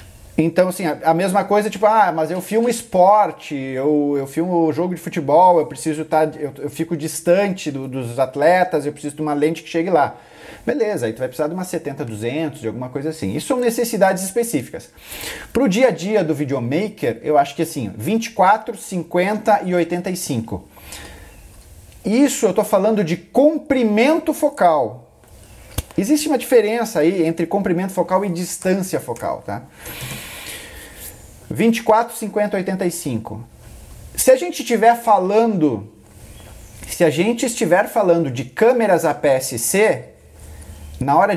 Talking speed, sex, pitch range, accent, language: 150 wpm, male, 140-210 Hz, Brazilian, Portuguese